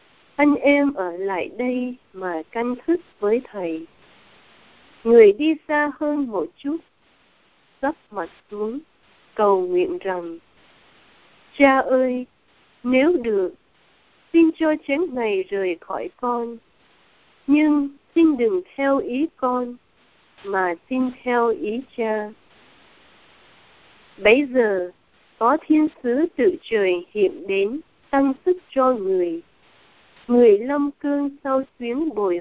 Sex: female